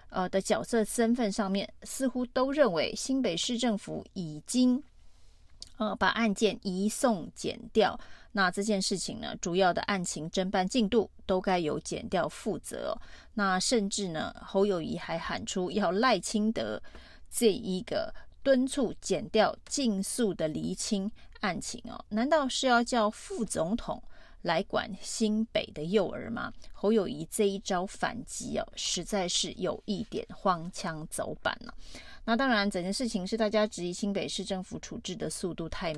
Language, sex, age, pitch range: Chinese, female, 30-49, 190-235 Hz